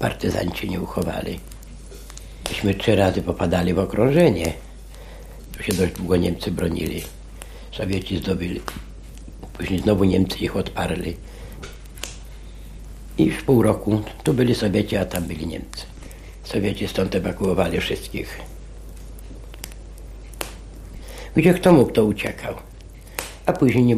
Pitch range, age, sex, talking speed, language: 90-115 Hz, 60-79, male, 115 wpm, Polish